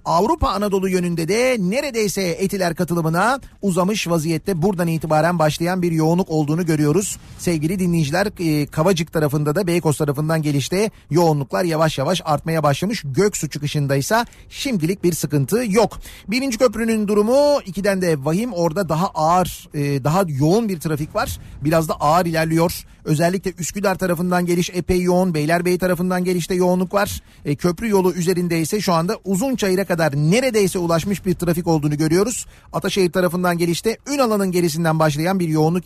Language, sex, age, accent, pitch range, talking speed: Turkish, male, 40-59, native, 160-195 Hz, 145 wpm